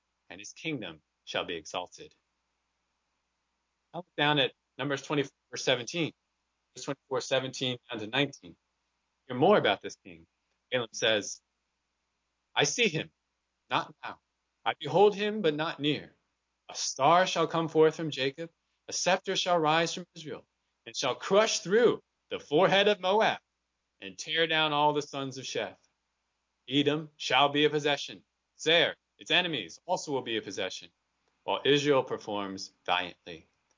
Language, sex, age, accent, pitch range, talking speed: English, male, 30-49, American, 100-165 Hz, 150 wpm